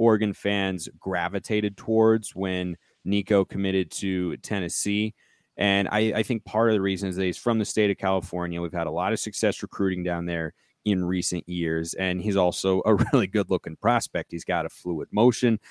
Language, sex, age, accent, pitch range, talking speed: English, male, 30-49, American, 100-120 Hz, 190 wpm